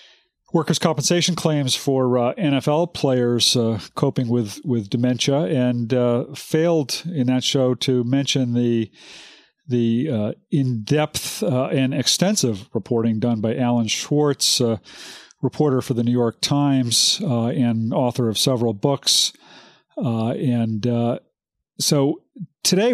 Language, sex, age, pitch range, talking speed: English, male, 50-69, 120-150 Hz, 130 wpm